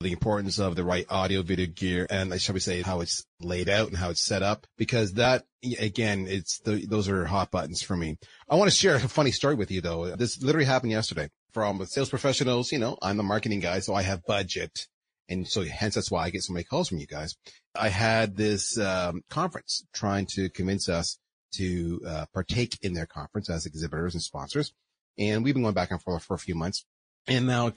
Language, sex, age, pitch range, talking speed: English, male, 30-49, 90-130 Hz, 225 wpm